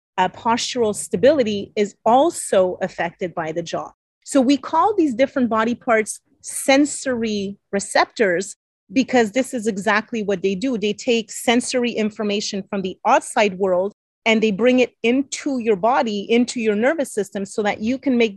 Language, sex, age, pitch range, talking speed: English, female, 30-49, 205-250 Hz, 160 wpm